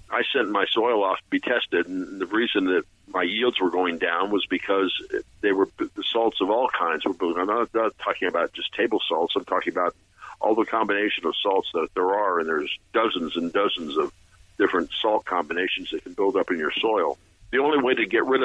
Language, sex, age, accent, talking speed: English, male, 50-69, American, 225 wpm